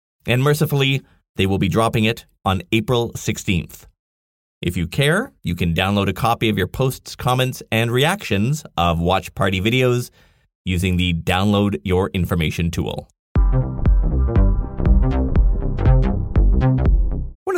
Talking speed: 120 wpm